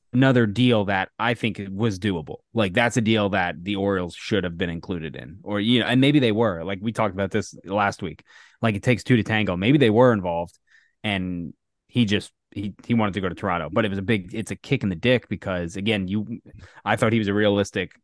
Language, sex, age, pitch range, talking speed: English, male, 20-39, 95-115 Hz, 245 wpm